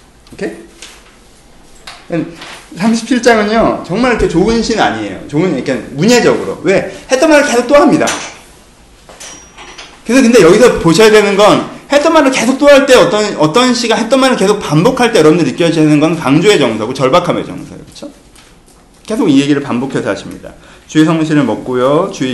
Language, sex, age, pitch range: Korean, male, 30-49, 150-205 Hz